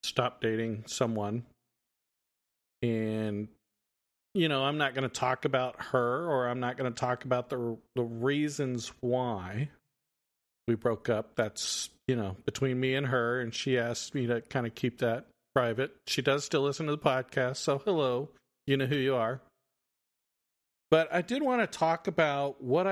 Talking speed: 175 wpm